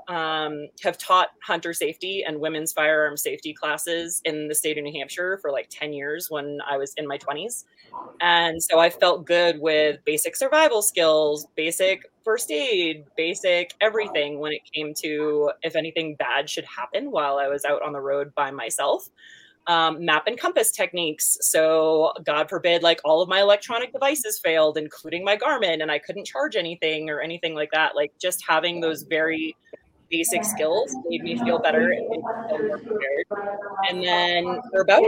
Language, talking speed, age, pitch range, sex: English, 175 wpm, 20-39, 155-185 Hz, female